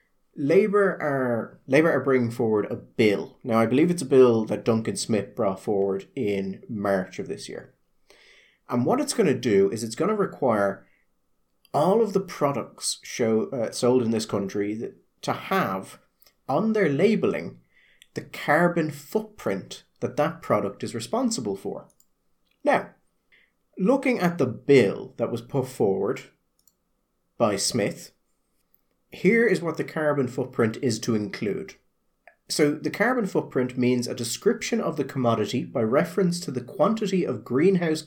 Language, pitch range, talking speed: English, 115-165 Hz, 150 wpm